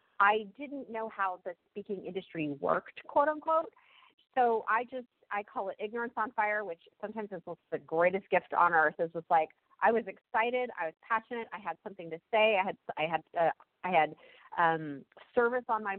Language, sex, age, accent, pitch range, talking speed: English, female, 30-49, American, 175-235 Hz, 195 wpm